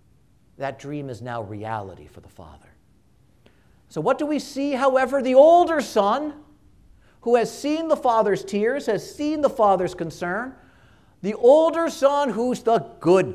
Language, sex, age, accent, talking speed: English, male, 50-69, American, 155 wpm